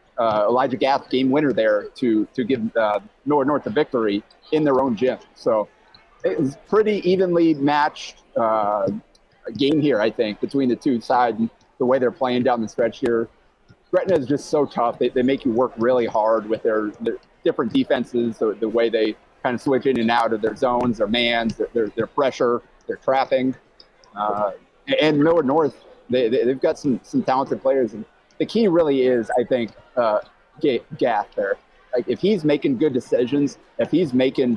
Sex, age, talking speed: male, 30-49, 195 wpm